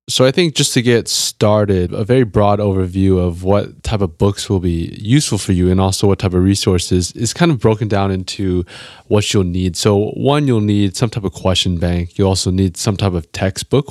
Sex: male